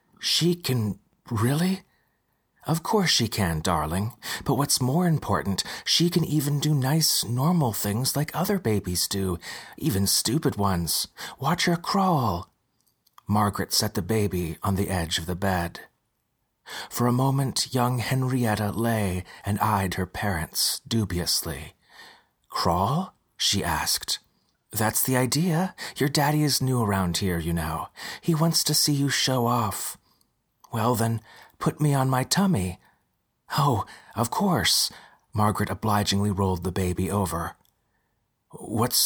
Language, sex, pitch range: English, male, 95-135 Hz